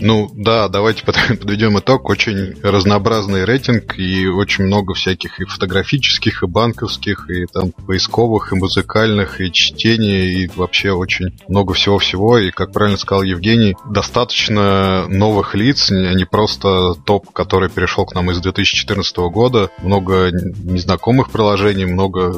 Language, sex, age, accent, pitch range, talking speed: Russian, male, 20-39, native, 95-105 Hz, 135 wpm